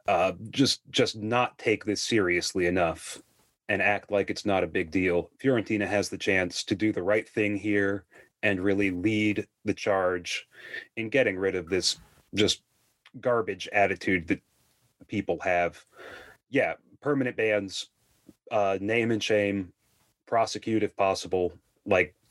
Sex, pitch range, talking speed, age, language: male, 100-115 Hz, 145 wpm, 30-49, English